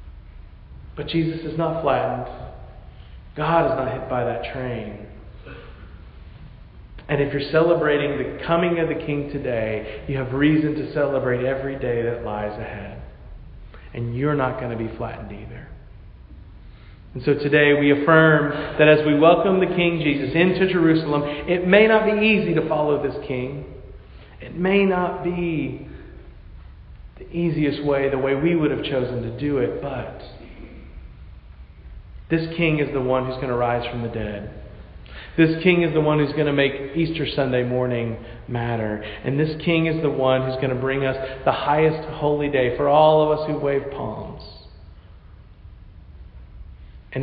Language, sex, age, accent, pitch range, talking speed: English, male, 40-59, American, 105-150 Hz, 165 wpm